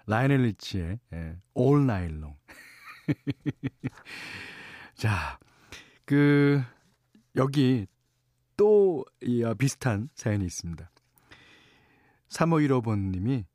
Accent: native